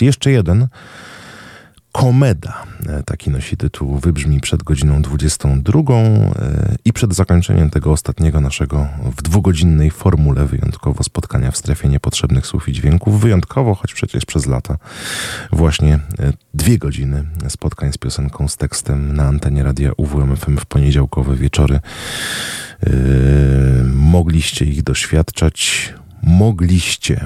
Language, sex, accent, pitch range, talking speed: Polish, male, native, 70-100 Hz, 110 wpm